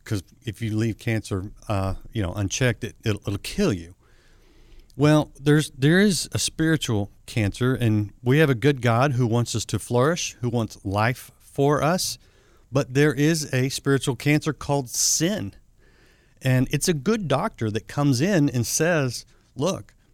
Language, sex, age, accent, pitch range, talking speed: English, male, 50-69, American, 110-140 Hz, 165 wpm